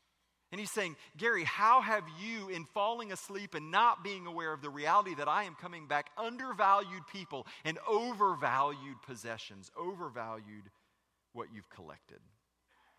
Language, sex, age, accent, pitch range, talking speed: English, male, 40-59, American, 100-160 Hz, 145 wpm